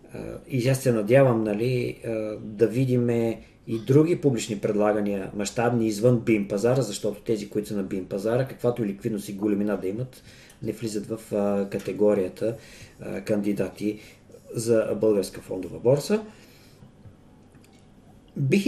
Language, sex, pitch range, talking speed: Bulgarian, male, 105-125 Hz, 125 wpm